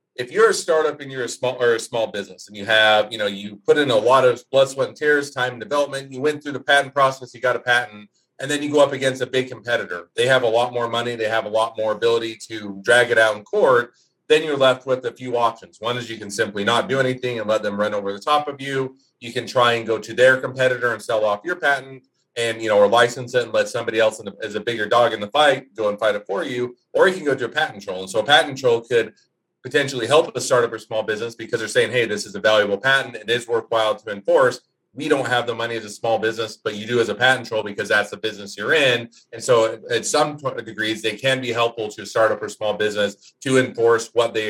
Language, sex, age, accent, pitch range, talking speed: English, male, 40-59, American, 110-140 Hz, 280 wpm